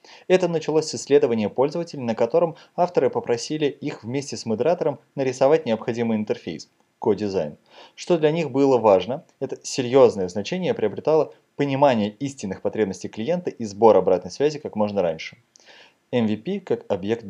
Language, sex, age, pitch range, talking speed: Russian, male, 20-39, 110-155 Hz, 140 wpm